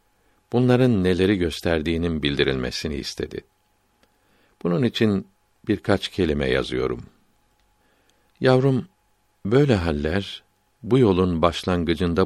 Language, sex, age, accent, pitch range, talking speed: Turkish, male, 60-79, native, 85-105 Hz, 80 wpm